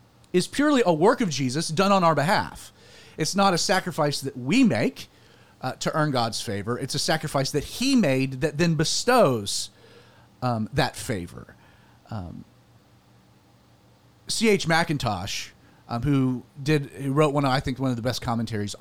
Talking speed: 160 wpm